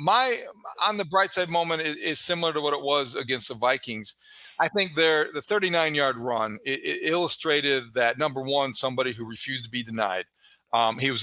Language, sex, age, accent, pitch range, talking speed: English, male, 40-59, American, 125-150 Hz, 205 wpm